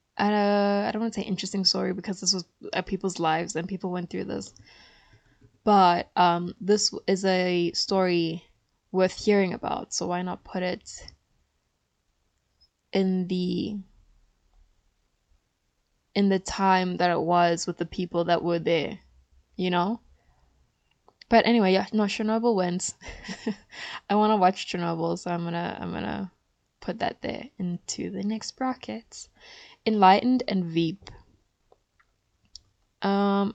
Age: 10-29